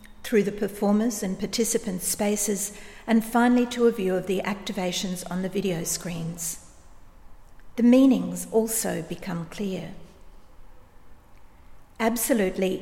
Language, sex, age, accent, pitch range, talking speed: English, female, 50-69, Australian, 185-220 Hz, 110 wpm